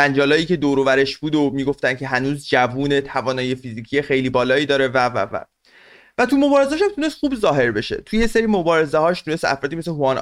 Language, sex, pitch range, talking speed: Persian, male, 135-190 Hz, 200 wpm